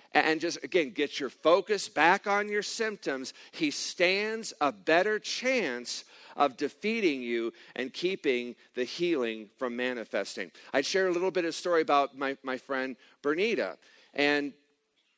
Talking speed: 155 wpm